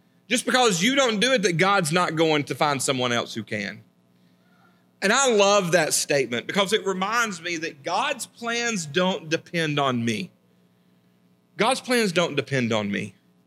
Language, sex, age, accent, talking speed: English, male, 40-59, American, 170 wpm